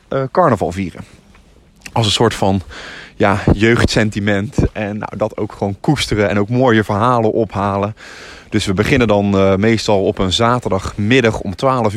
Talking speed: 150 wpm